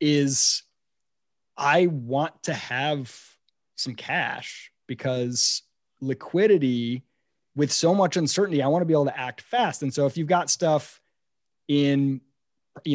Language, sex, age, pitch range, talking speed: English, male, 30-49, 130-175 Hz, 135 wpm